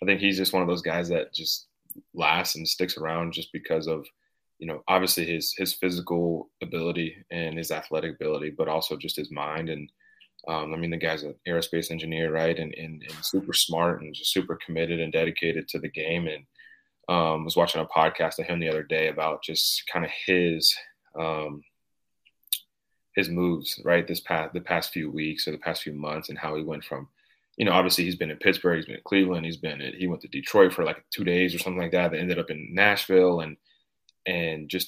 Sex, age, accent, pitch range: male, 30-49, American, 80-90 Hz